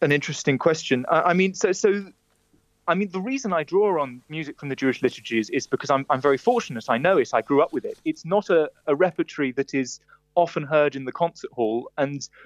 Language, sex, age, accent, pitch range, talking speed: English, male, 30-49, British, 135-175 Hz, 230 wpm